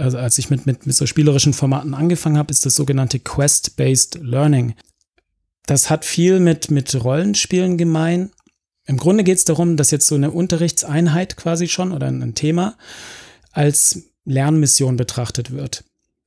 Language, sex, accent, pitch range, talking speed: German, male, German, 135-160 Hz, 155 wpm